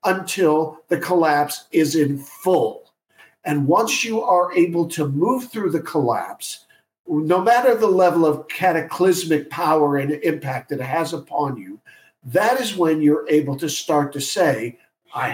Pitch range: 135-180 Hz